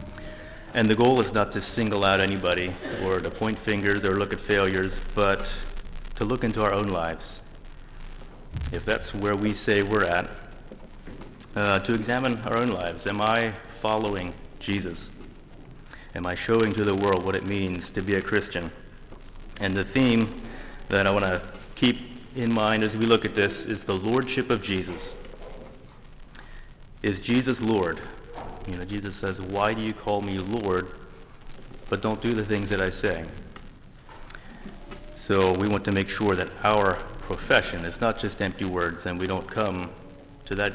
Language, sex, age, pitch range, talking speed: English, male, 30-49, 95-115 Hz, 170 wpm